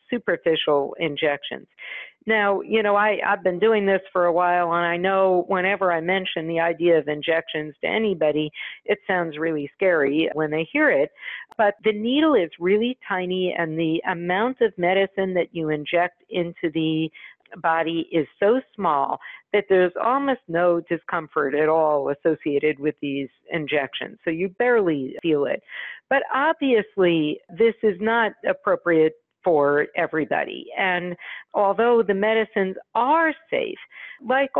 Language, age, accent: English, 50-69, American